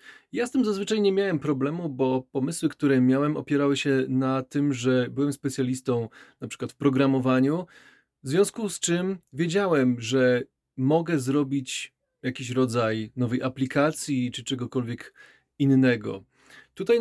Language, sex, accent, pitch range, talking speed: Polish, male, native, 130-155 Hz, 135 wpm